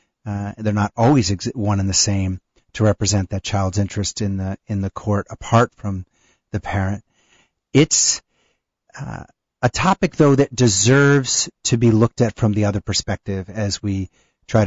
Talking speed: 175 wpm